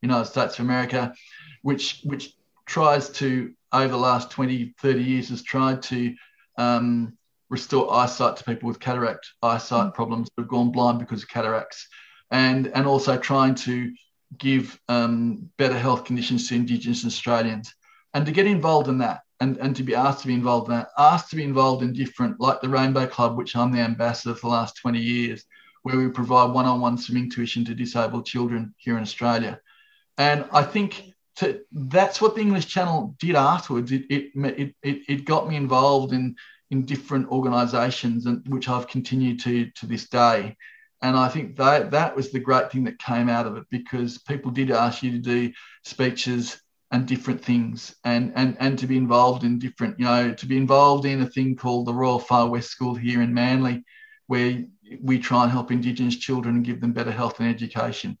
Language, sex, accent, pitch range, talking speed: English, male, Australian, 120-135 Hz, 195 wpm